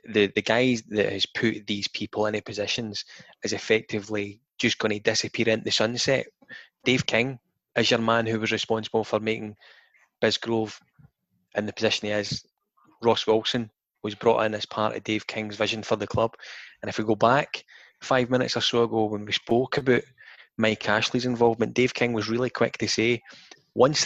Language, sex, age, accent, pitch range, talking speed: English, male, 20-39, British, 105-120 Hz, 185 wpm